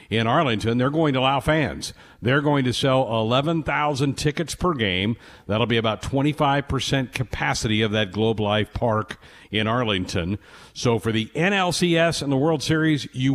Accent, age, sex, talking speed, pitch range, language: American, 50-69, male, 160 wpm, 105-140 Hz, English